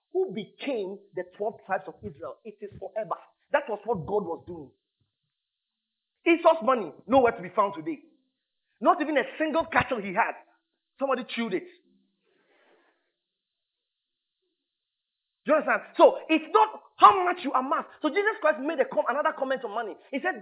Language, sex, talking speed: English, male, 165 wpm